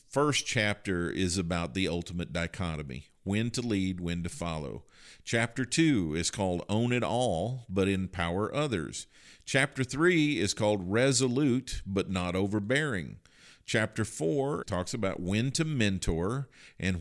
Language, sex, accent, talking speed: English, male, American, 140 wpm